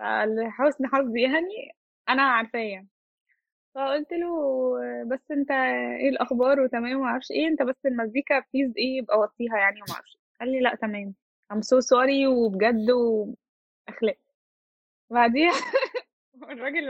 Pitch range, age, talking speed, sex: 235-300 Hz, 10-29, 115 wpm, female